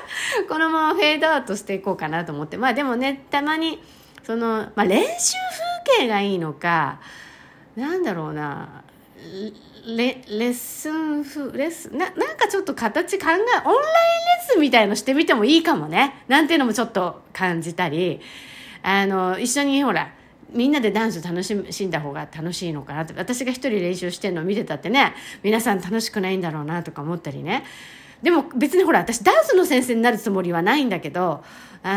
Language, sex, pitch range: Japanese, female, 180-285 Hz